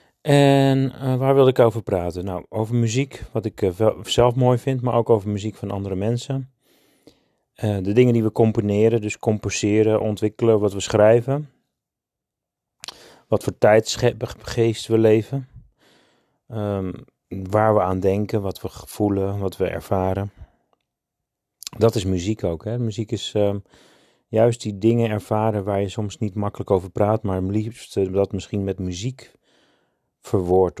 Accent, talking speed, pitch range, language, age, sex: Dutch, 150 wpm, 100-120 Hz, Dutch, 30-49, male